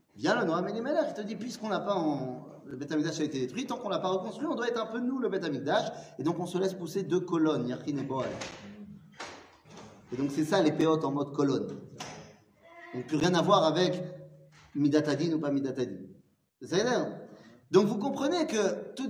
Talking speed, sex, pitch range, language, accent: 215 wpm, male, 155-235 Hz, French, French